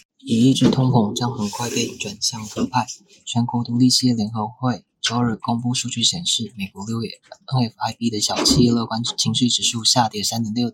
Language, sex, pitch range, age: Chinese, male, 115-125 Hz, 20-39